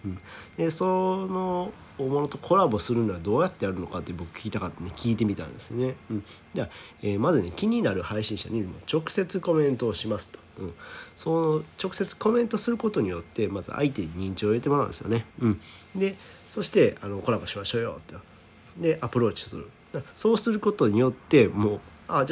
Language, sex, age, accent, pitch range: Japanese, male, 40-59, native, 100-150 Hz